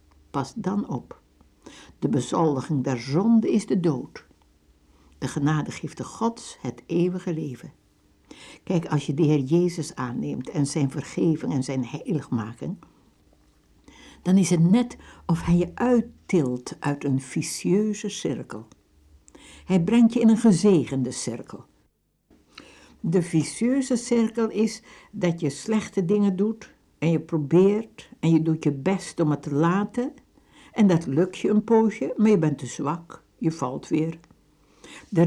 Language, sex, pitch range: Dutch, female, 145-210 Hz